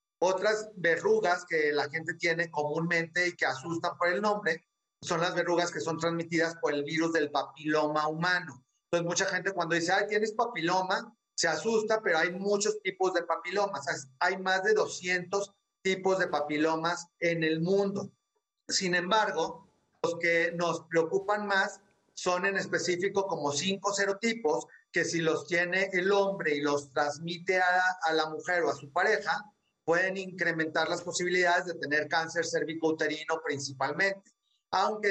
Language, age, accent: Spanish, 40-59, Mexican